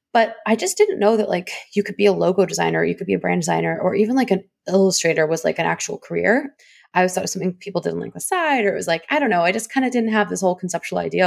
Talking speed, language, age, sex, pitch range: 310 wpm, English, 20-39, female, 170-205 Hz